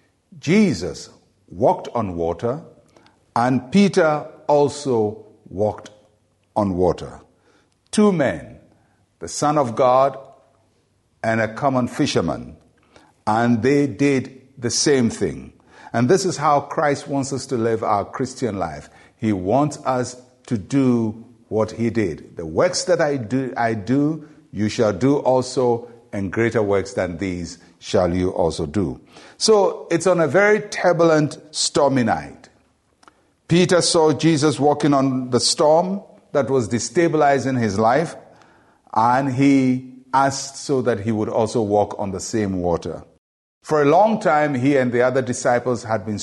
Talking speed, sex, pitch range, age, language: 145 wpm, male, 110-145 Hz, 60-79, English